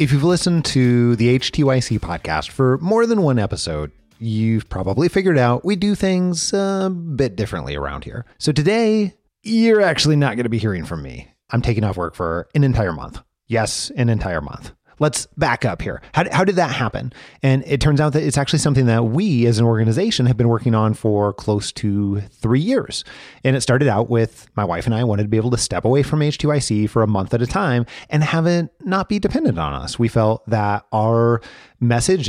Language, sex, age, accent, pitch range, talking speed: English, male, 30-49, American, 110-150 Hz, 215 wpm